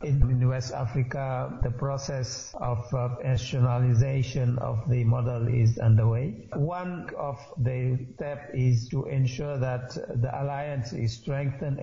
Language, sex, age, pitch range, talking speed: English, male, 60-79, 120-135 Hz, 125 wpm